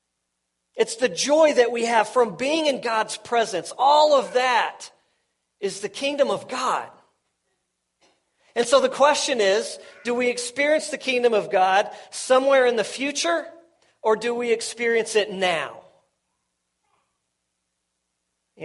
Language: English